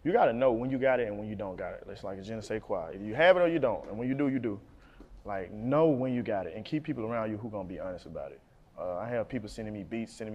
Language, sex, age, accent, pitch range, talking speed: English, male, 20-39, American, 105-140 Hz, 325 wpm